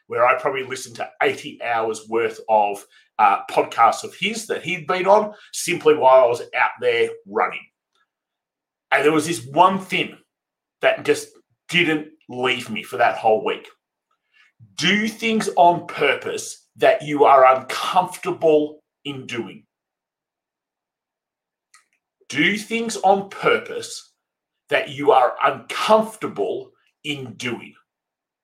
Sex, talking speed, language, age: male, 125 wpm, English, 40-59